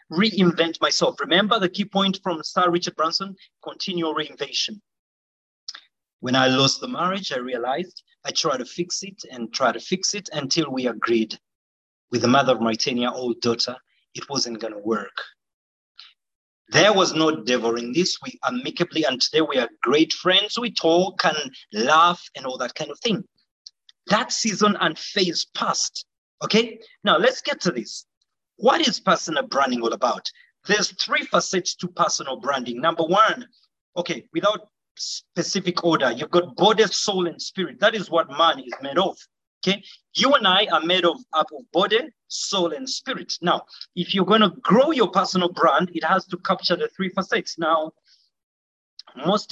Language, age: English, 30-49